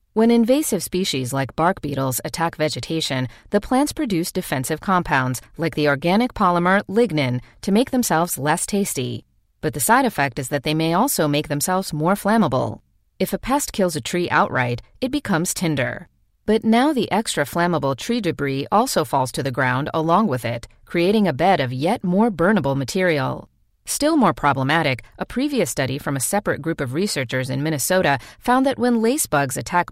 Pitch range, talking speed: 145-220 Hz, 180 wpm